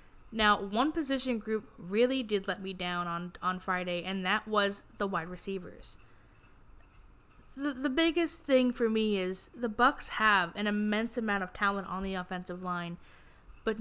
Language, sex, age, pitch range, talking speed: English, female, 10-29, 195-230 Hz, 165 wpm